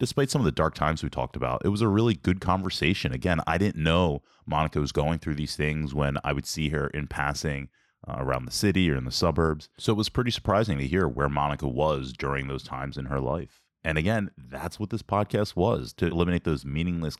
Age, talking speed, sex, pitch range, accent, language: 20-39, 235 wpm, male, 70-95 Hz, American, English